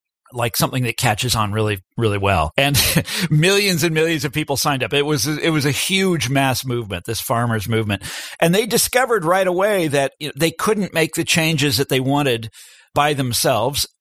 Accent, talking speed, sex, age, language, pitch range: American, 195 wpm, male, 40-59, English, 115-155 Hz